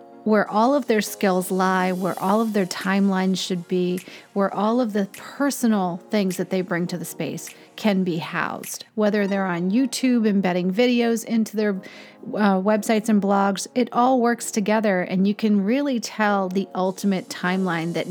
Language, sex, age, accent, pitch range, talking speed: English, female, 40-59, American, 185-240 Hz, 175 wpm